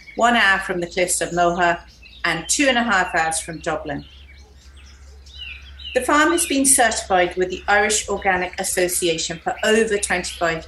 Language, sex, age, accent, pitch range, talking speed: English, female, 40-59, British, 155-210 Hz, 155 wpm